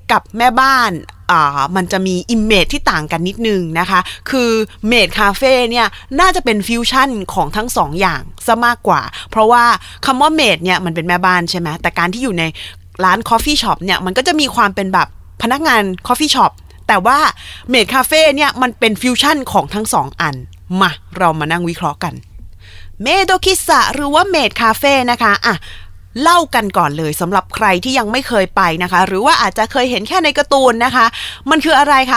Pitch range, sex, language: 180-265 Hz, female, Thai